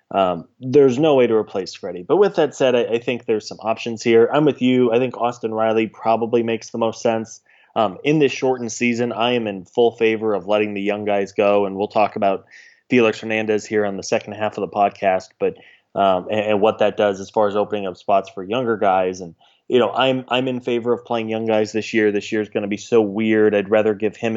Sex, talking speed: male, 250 wpm